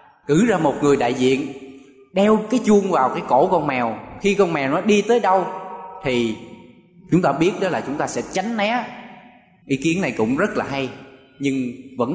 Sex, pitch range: male, 130-200 Hz